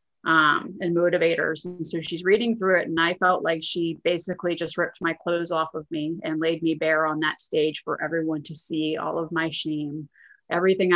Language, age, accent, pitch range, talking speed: English, 30-49, American, 160-200 Hz, 210 wpm